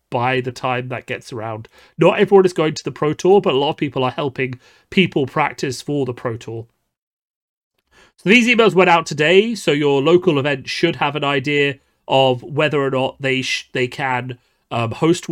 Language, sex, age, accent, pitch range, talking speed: English, male, 30-49, British, 125-150 Hz, 200 wpm